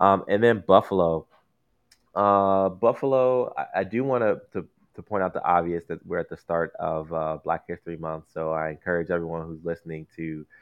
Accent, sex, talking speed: American, male, 185 wpm